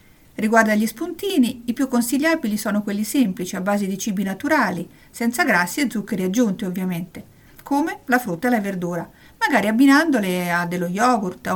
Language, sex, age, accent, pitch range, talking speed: Italian, female, 50-69, native, 200-275 Hz, 165 wpm